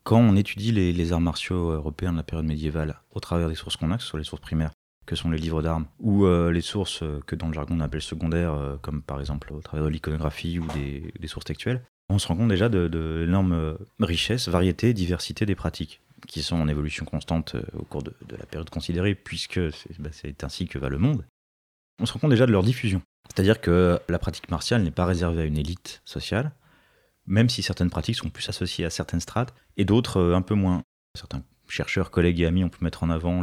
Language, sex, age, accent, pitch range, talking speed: French, male, 30-49, French, 80-100 Hz, 240 wpm